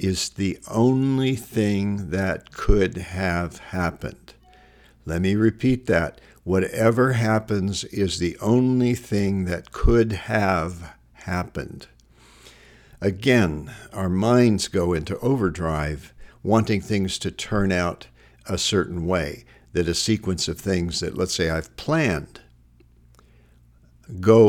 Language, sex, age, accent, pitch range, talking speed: English, male, 60-79, American, 85-115 Hz, 115 wpm